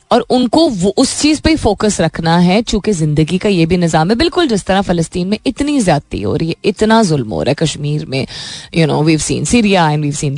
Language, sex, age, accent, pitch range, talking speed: Hindi, female, 20-39, native, 170-235 Hz, 225 wpm